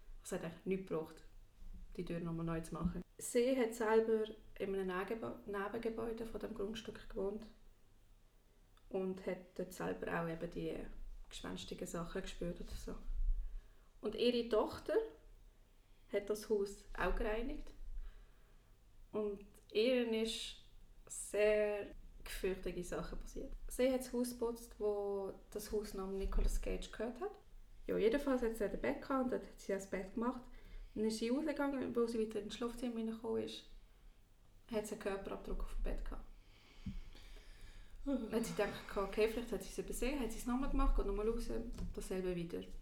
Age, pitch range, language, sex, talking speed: 20-39, 160-225 Hz, German, female, 155 wpm